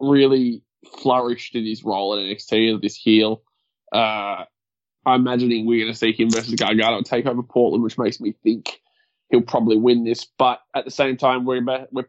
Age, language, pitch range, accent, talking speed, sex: 20-39, English, 110-130 Hz, Australian, 195 wpm, male